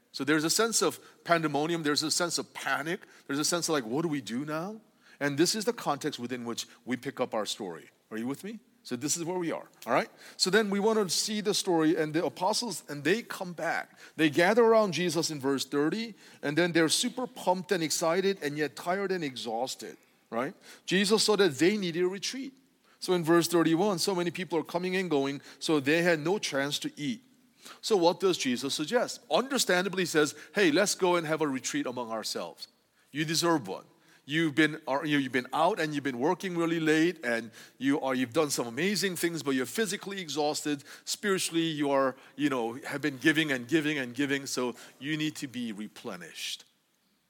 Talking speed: 210 wpm